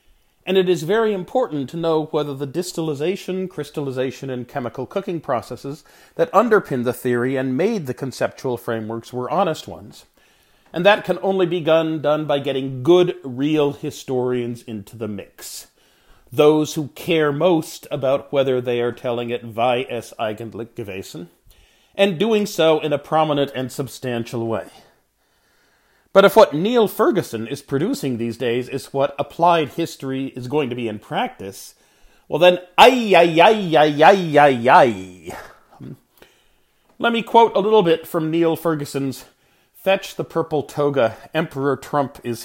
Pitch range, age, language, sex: 125-170 Hz, 40-59, English, male